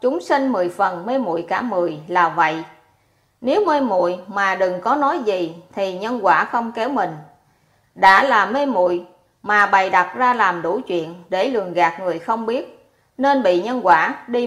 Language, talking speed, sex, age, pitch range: Vietnamese, 190 wpm, female, 20-39, 180-240 Hz